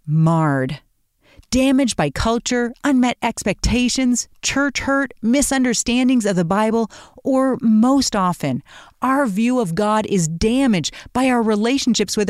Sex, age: female, 40-59